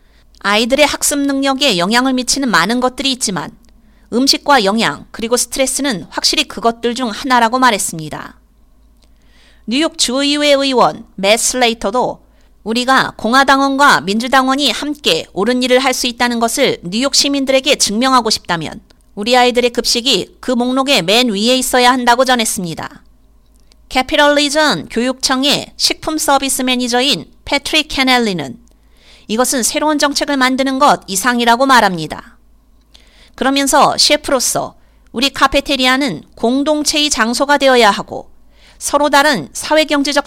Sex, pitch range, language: female, 235-285 Hz, Korean